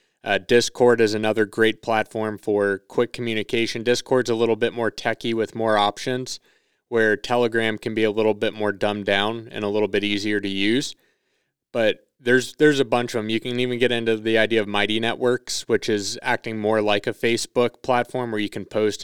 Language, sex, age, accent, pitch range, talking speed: English, male, 20-39, American, 105-120 Hz, 200 wpm